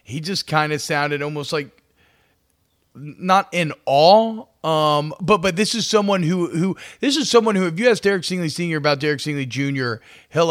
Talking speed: 190 wpm